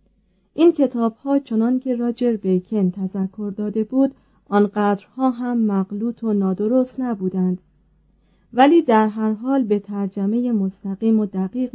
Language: Persian